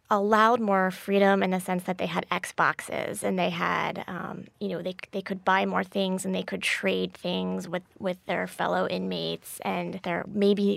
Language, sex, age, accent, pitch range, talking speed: English, female, 20-39, American, 170-200 Hz, 195 wpm